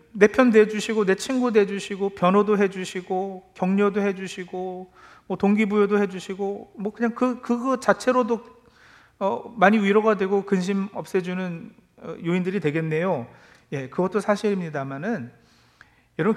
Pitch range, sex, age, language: 160-225 Hz, male, 40-59, Korean